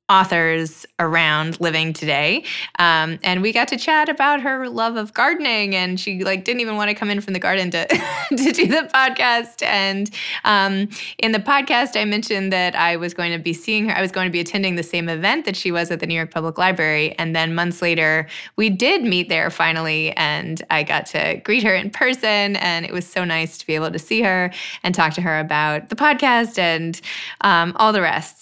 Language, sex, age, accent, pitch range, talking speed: English, female, 20-39, American, 170-220 Hz, 220 wpm